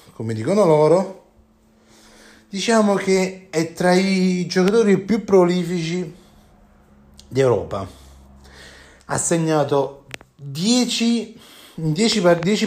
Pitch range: 120-175 Hz